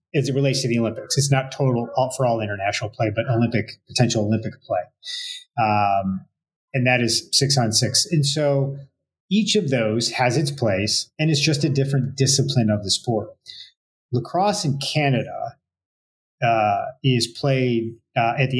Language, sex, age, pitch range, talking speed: English, male, 30-49, 110-135 Hz, 165 wpm